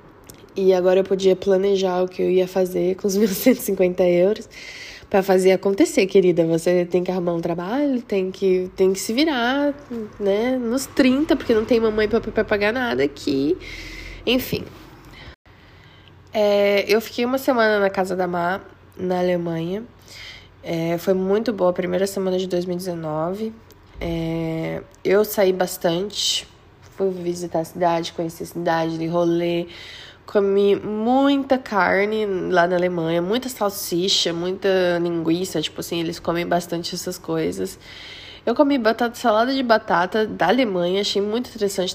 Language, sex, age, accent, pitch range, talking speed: Portuguese, female, 10-29, Brazilian, 175-210 Hz, 150 wpm